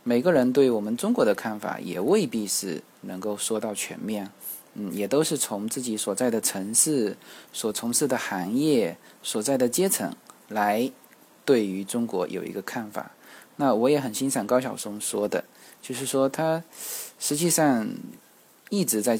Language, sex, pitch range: Chinese, male, 110-165 Hz